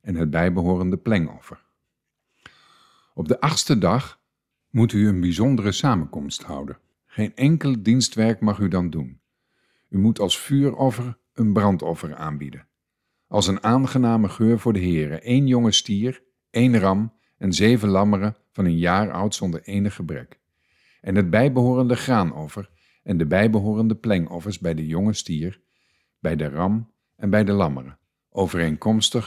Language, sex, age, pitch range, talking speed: Dutch, male, 50-69, 90-115 Hz, 145 wpm